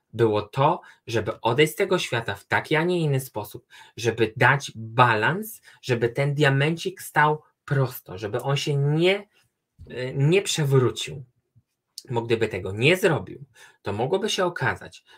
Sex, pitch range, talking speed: male, 110-145 Hz, 140 wpm